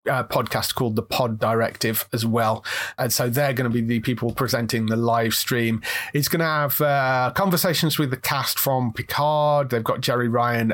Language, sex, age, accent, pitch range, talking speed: English, male, 30-49, British, 115-140 Hz, 195 wpm